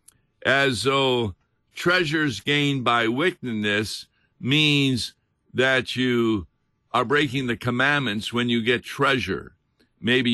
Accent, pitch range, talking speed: American, 110-130 Hz, 105 wpm